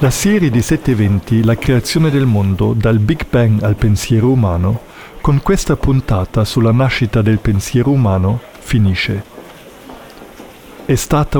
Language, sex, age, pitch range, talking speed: Italian, male, 50-69, 110-140 Hz, 135 wpm